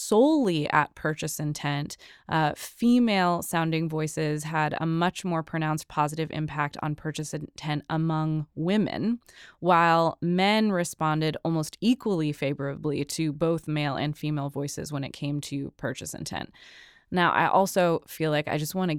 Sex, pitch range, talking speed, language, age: female, 150-190 Hz, 150 wpm, English, 20-39